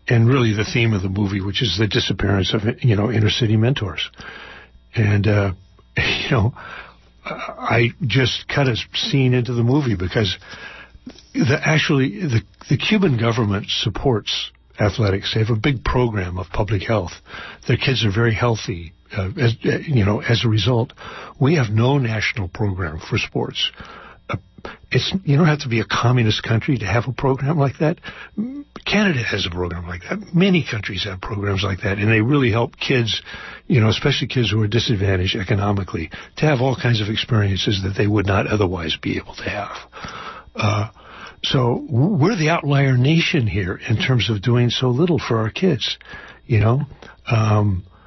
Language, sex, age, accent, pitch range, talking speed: English, male, 60-79, American, 105-130 Hz, 175 wpm